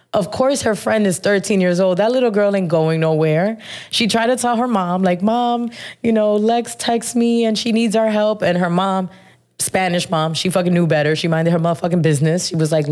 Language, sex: English, female